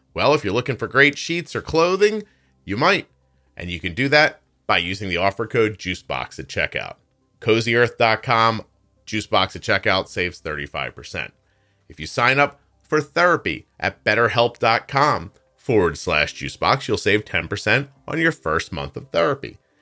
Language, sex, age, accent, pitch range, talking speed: English, male, 30-49, American, 80-115 Hz, 150 wpm